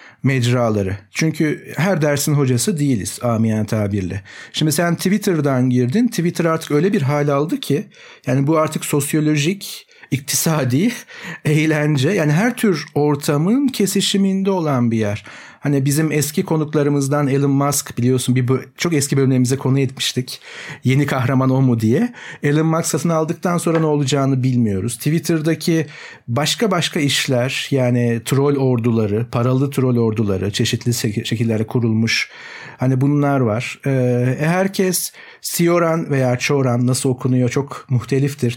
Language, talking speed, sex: Turkish, 135 wpm, male